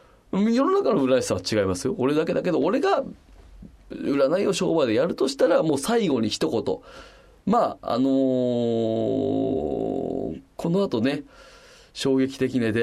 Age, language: 30-49, Japanese